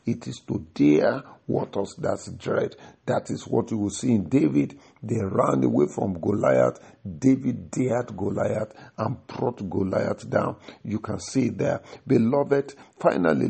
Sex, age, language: male, 50-69, English